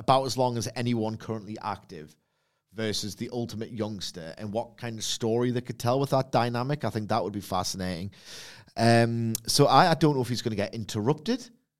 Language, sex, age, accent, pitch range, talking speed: English, male, 30-49, British, 105-140 Hz, 205 wpm